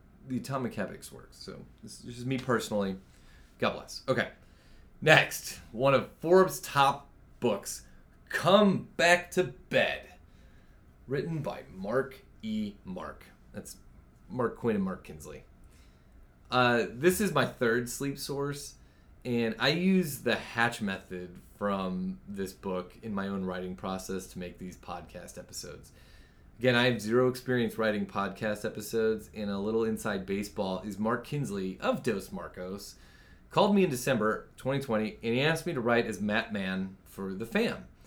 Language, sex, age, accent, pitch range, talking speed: English, male, 30-49, American, 95-135 Hz, 150 wpm